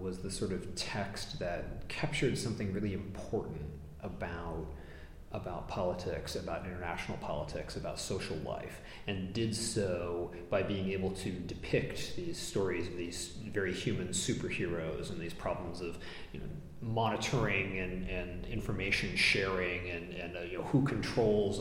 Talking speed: 135 wpm